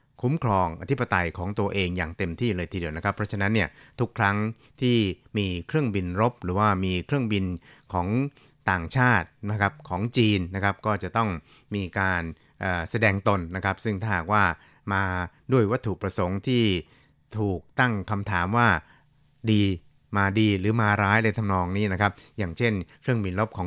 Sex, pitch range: male, 95-115 Hz